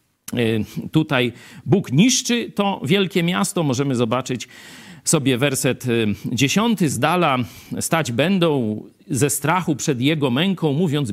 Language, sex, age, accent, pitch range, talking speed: Polish, male, 50-69, native, 130-195 Hz, 115 wpm